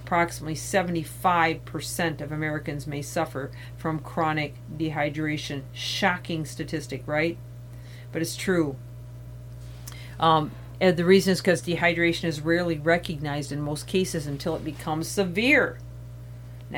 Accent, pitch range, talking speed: American, 140-180 Hz, 120 wpm